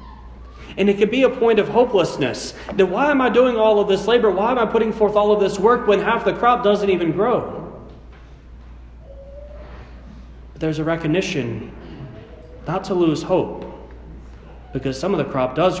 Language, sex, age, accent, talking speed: English, male, 30-49, American, 180 wpm